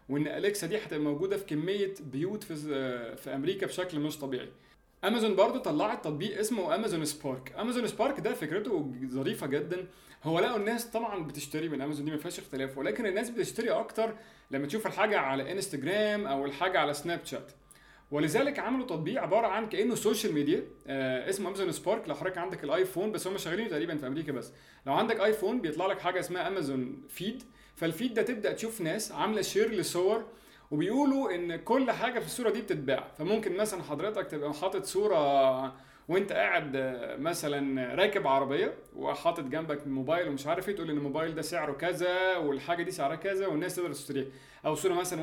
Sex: male